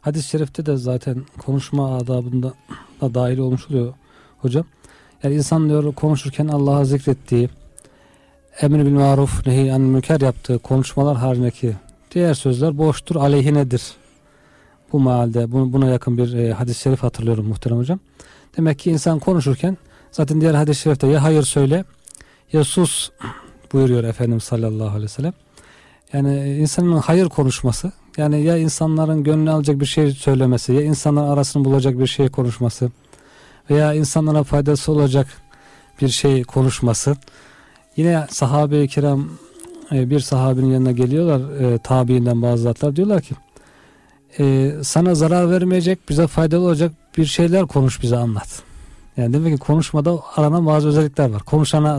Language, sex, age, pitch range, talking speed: Turkish, male, 40-59, 130-155 Hz, 135 wpm